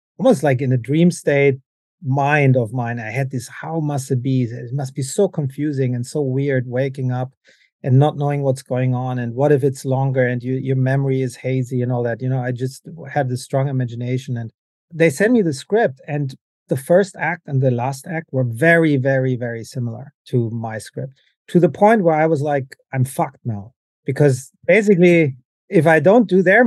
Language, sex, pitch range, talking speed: English, male, 130-160 Hz, 210 wpm